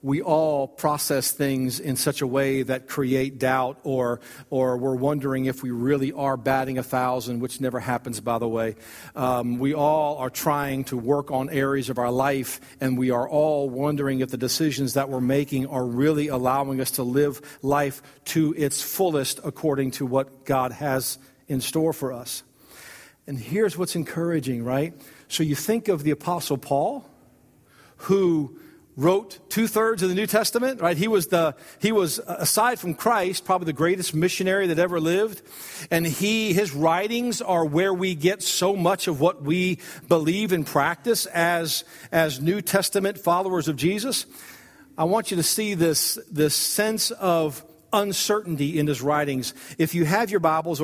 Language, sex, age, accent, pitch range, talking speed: English, male, 50-69, American, 135-180 Hz, 170 wpm